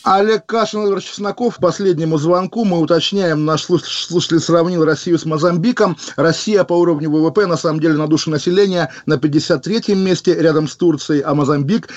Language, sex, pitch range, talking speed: Russian, male, 145-175 Hz, 155 wpm